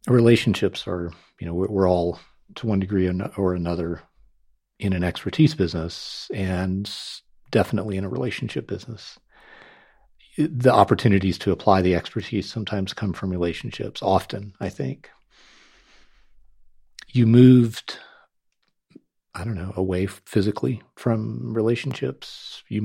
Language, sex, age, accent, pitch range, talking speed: English, male, 40-59, American, 90-105 Hz, 120 wpm